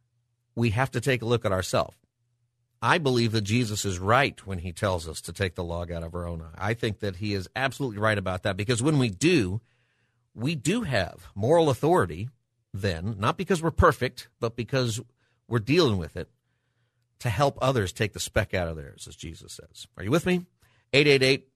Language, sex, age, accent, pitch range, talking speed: English, male, 50-69, American, 100-130 Hz, 205 wpm